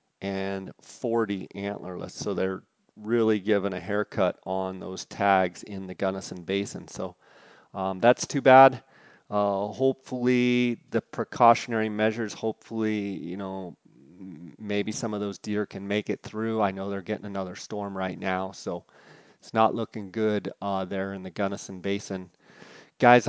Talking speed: 150 wpm